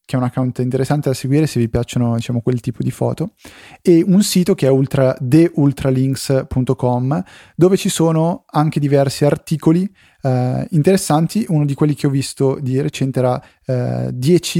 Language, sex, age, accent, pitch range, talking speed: Italian, male, 20-39, native, 130-150 Hz, 165 wpm